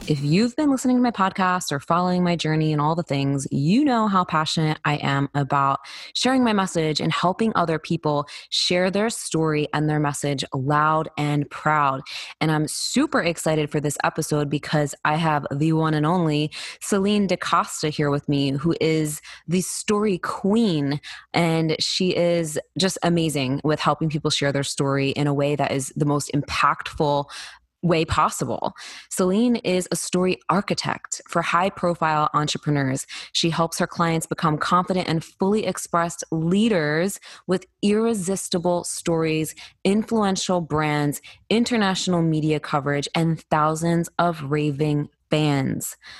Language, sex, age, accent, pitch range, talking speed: English, female, 20-39, American, 150-185 Hz, 150 wpm